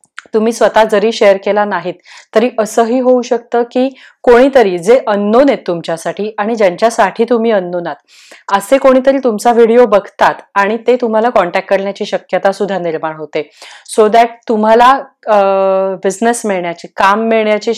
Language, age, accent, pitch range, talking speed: Marathi, 30-49, native, 185-230 Hz, 145 wpm